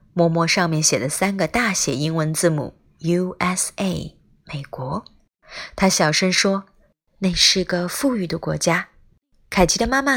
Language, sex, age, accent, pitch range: Chinese, female, 20-39, native, 170-225 Hz